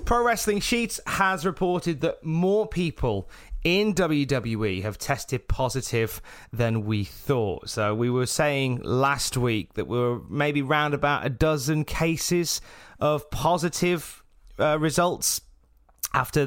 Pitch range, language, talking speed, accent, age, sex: 105-145 Hz, English, 130 wpm, British, 30-49, male